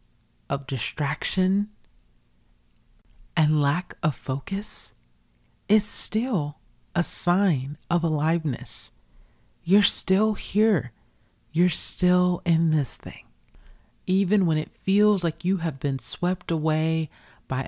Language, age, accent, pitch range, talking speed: English, 40-59, American, 130-170 Hz, 105 wpm